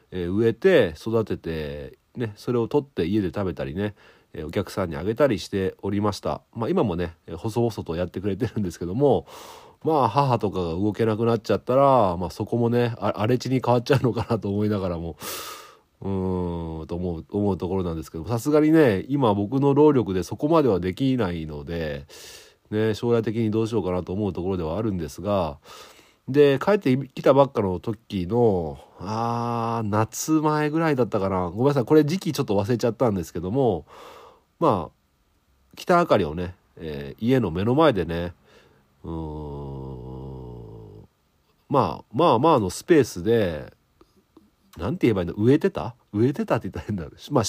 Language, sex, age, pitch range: Japanese, male, 40-59, 90-125 Hz